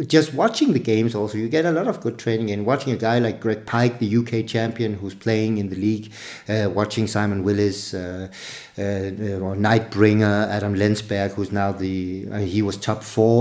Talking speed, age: 200 wpm, 50-69